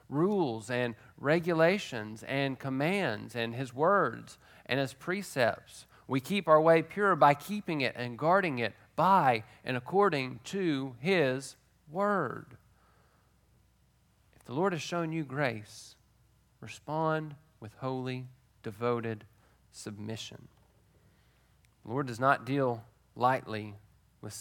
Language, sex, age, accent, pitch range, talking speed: English, male, 40-59, American, 115-140 Hz, 115 wpm